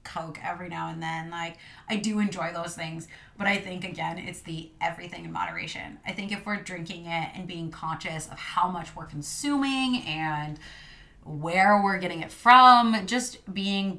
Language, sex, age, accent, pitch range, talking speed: English, female, 20-39, American, 160-195 Hz, 180 wpm